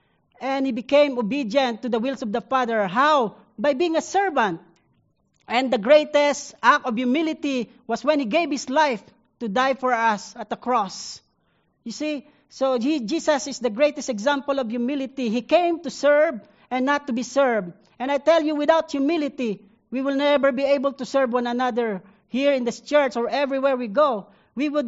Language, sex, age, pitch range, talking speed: English, female, 40-59, 240-290 Hz, 190 wpm